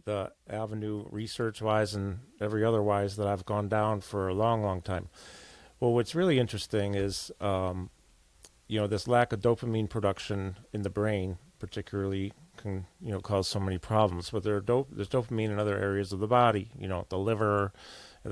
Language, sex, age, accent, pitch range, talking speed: English, male, 40-59, American, 100-120 Hz, 190 wpm